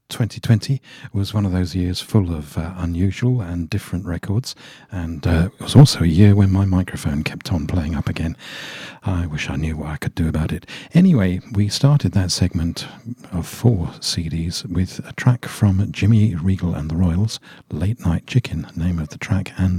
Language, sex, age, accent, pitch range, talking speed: English, male, 50-69, British, 85-105 Hz, 190 wpm